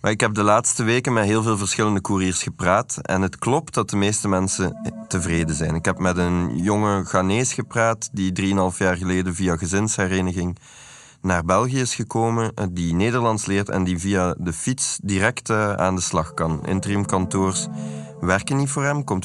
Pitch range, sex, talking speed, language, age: 90-110 Hz, male, 180 wpm, Dutch, 20-39